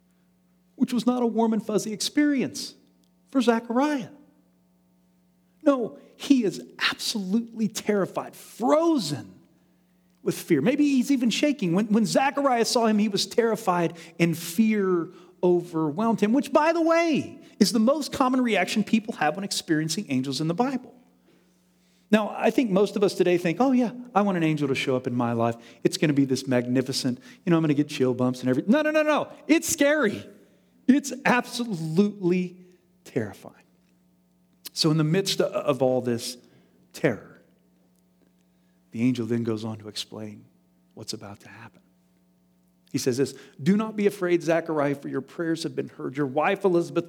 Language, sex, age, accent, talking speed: English, male, 40-59, American, 165 wpm